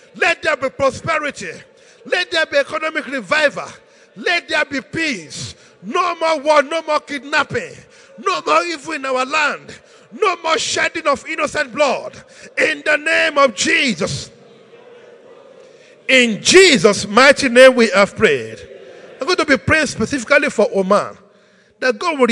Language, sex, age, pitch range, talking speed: English, male, 50-69, 245-360 Hz, 145 wpm